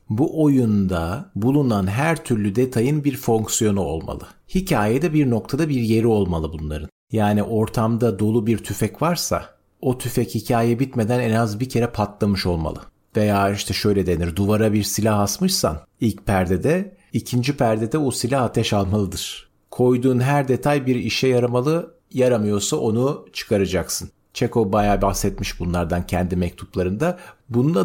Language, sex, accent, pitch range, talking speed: Turkish, male, native, 100-135 Hz, 140 wpm